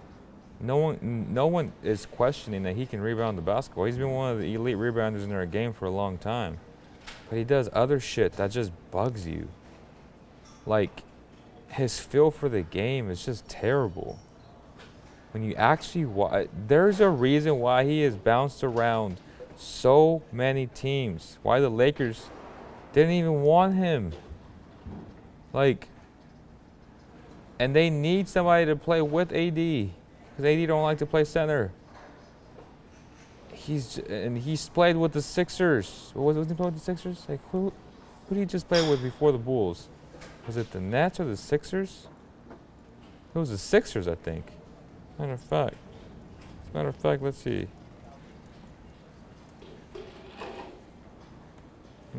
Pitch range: 110-155 Hz